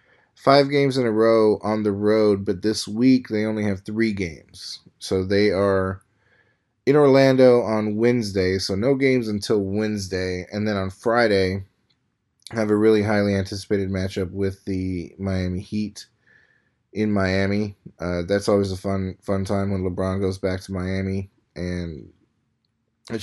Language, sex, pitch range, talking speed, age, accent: English, male, 100-120 Hz, 150 wpm, 20-39, American